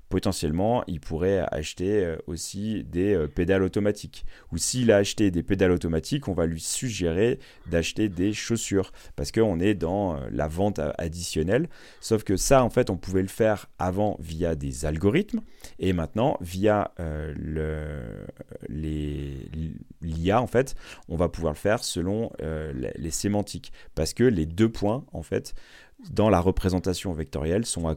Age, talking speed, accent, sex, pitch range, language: 30-49, 165 wpm, French, male, 80-105 Hz, French